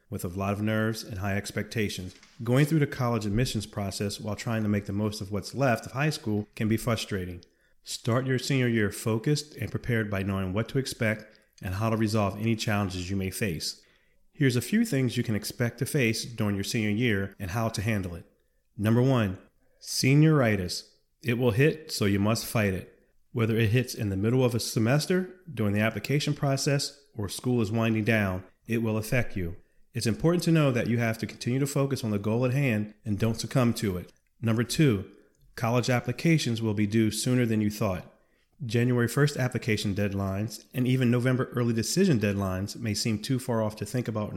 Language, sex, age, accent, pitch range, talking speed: English, male, 30-49, American, 105-125 Hz, 205 wpm